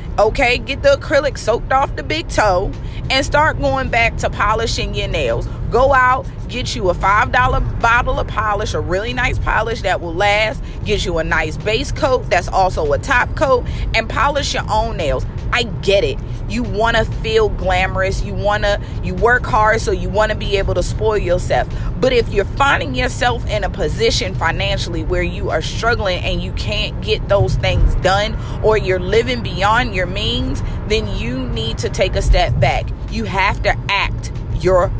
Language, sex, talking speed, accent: English, female, 190 wpm, American